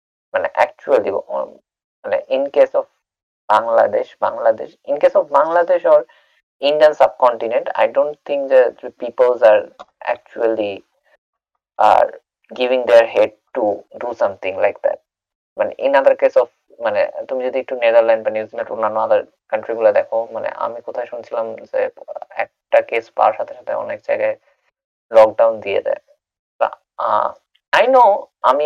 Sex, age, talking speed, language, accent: male, 20-39, 75 wpm, Bengali, native